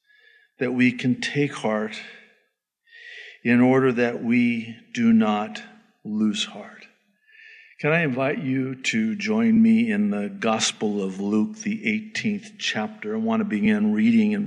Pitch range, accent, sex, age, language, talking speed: 150-230 Hz, American, male, 50-69, English, 140 wpm